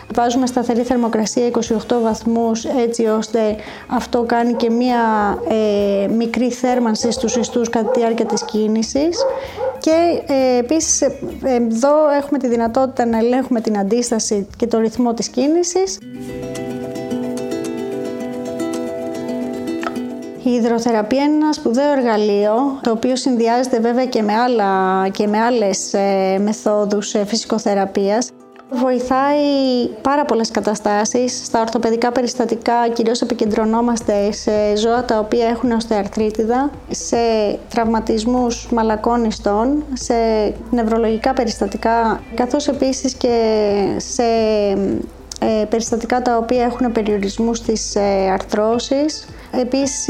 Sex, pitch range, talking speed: female, 215-250 Hz, 105 wpm